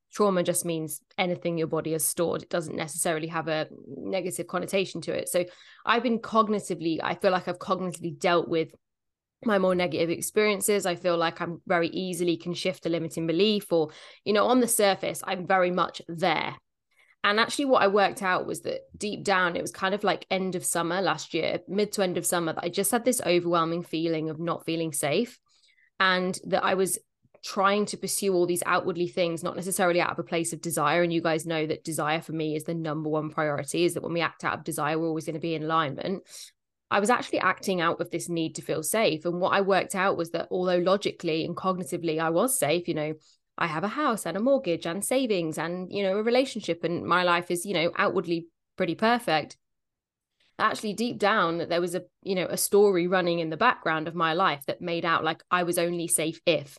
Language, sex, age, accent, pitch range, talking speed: English, female, 10-29, British, 165-190 Hz, 225 wpm